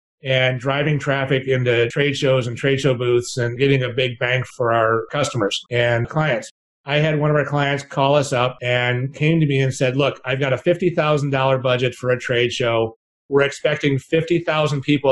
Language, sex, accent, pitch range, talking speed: English, male, American, 135-175 Hz, 195 wpm